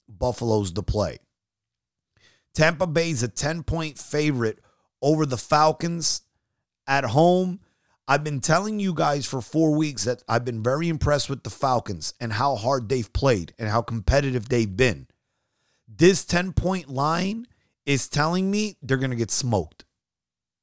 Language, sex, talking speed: English, male, 145 wpm